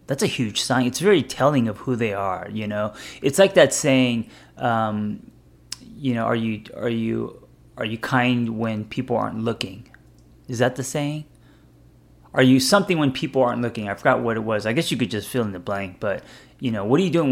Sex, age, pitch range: male, 30-49, 100-125 Hz